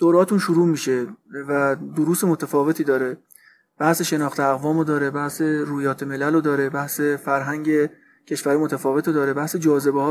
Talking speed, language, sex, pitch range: 135 wpm, Persian, male, 140-165 Hz